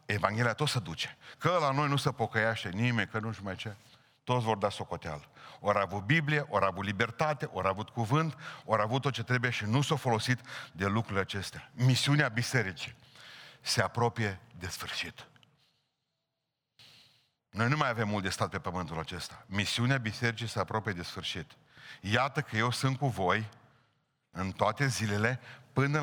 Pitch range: 100-135 Hz